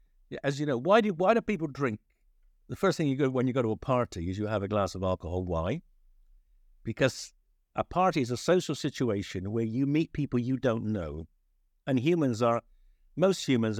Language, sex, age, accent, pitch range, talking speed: English, male, 60-79, British, 95-135 Hz, 205 wpm